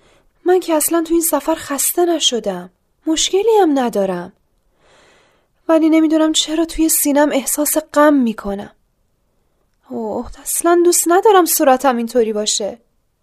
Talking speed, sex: 120 wpm, female